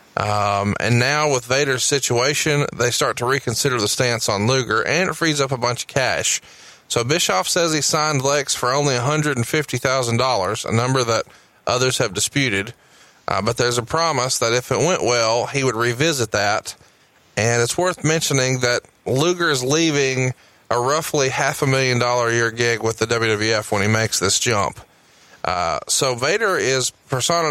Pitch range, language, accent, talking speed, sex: 115-145 Hz, English, American, 175 wpm, male